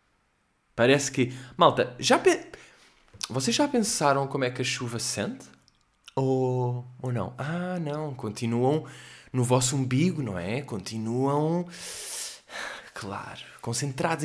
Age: 20-39